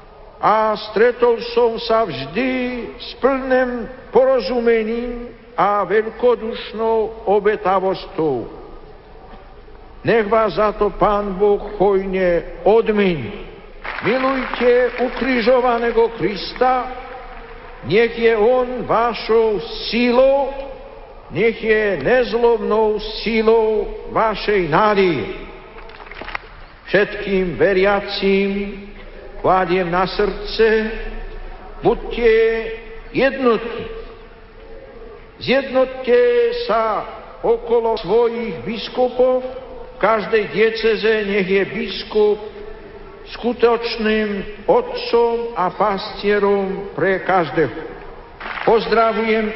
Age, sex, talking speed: 60-79, male, 70 wpm